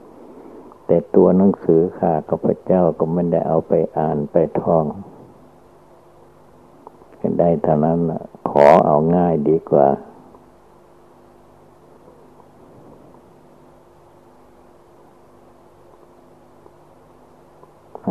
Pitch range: 80-90 Hz